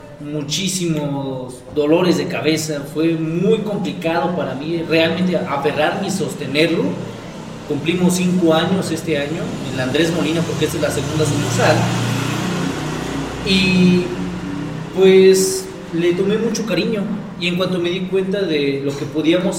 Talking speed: 130 wpm